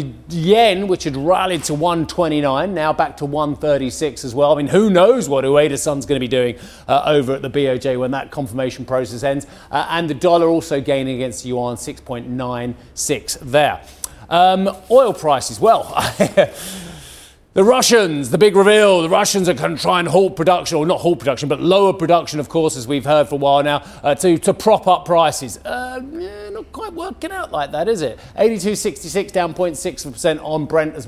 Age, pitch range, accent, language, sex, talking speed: 30-49, 140-185 Hz, British, English, male, 190 wpm